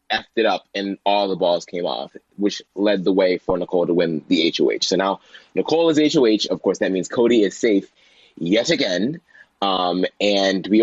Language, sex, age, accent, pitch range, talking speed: English, male, 20-39, American, 95-125 Hz, 200 wpm